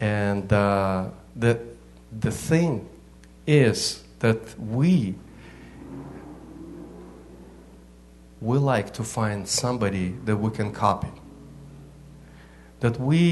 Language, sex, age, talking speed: English, male, 50-69, 85 wpm